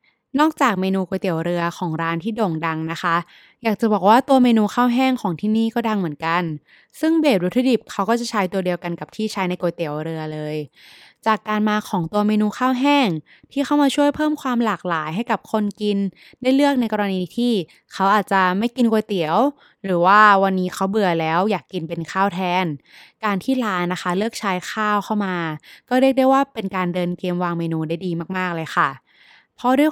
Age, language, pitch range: 20-39, Thai, 175-235 Hz